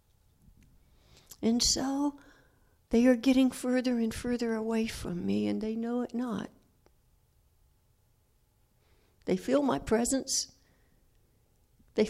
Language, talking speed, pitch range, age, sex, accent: English, 105 wpm, 180-235 Hz, 60-79, female, American